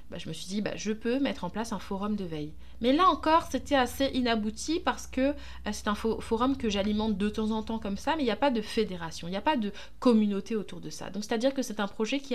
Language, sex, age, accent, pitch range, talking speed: French, female, 20-39, French, 185-250 Hz, 295 wpm